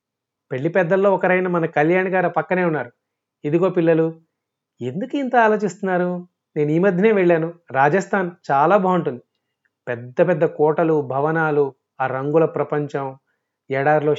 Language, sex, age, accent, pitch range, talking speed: Telugu, male, 30-49, native, 145-200 Hz, 125 wpm